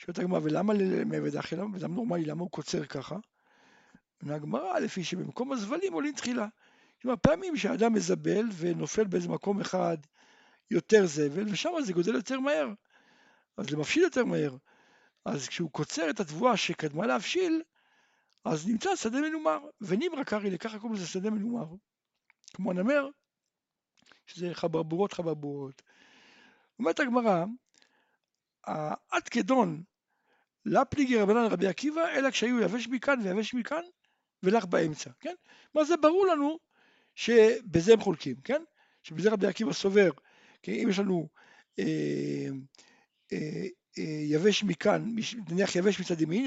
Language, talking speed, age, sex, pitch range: Hebrew, 130 wpm, 60-79, male, 180-270 Hz